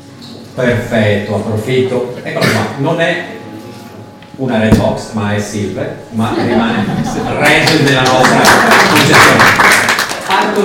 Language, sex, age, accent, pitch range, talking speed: Italian, male, 40-59, native, 110-135 Hz, 105 wpm